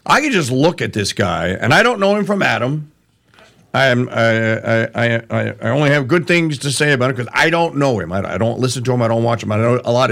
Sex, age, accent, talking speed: male, 50-69, American, 280 wpm